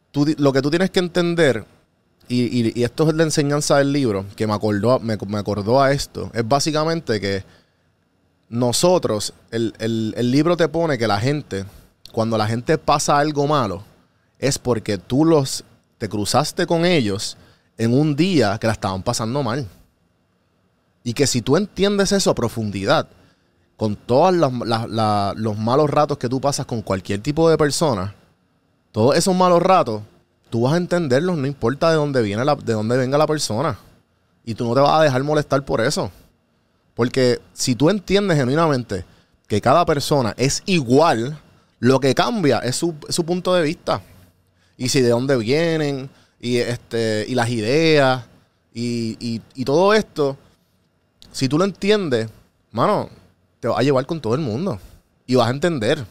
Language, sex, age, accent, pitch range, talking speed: Spanish, male, 30-49, Venezuelan, 105-150 Hz, 175 wpm